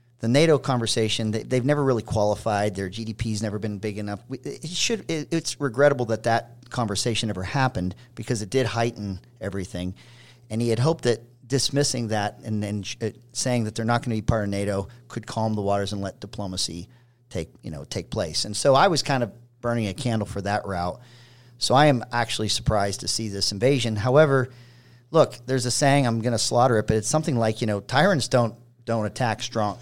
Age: 40-59